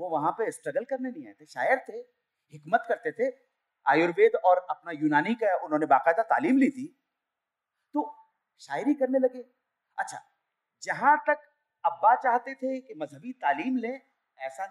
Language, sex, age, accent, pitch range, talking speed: Hindi, male, 40-59, native, 180-285 Hz, 85 wpm